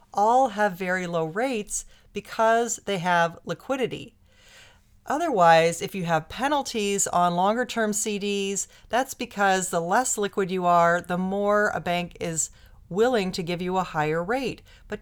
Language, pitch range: English, 165-215 Hz